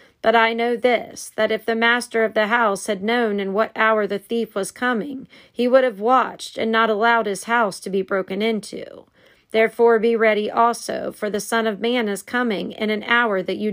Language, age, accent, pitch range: English, 40-59, American, 205-240 Hz